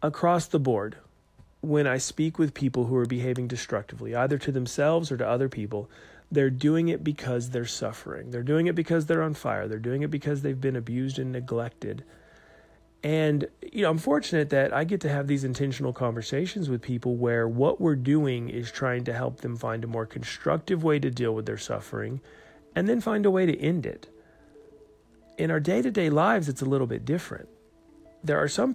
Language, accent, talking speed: English, American, 200 wpm